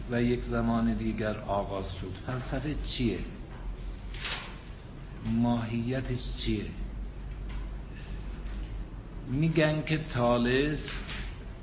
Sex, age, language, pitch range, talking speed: male, 60-79, Persian, 115-140 Hz, 65 wpm